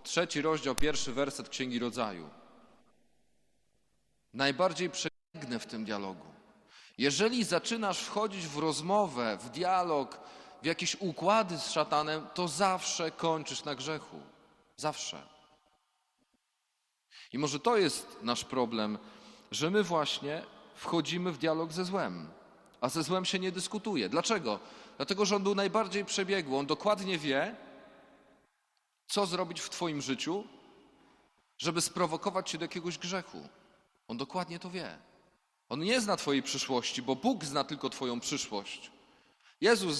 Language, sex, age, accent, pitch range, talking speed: Polish, male, 40-59, native, 130-185 Hz, 130 wpm